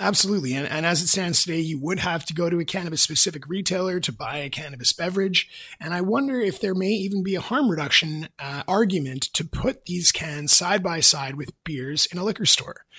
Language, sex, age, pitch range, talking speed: English, male, 30-49, 150-185 Hz, 210 wpm